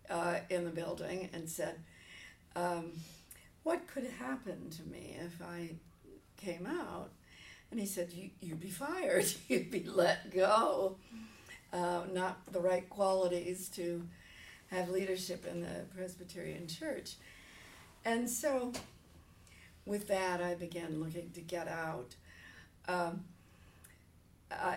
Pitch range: 165-190 Hz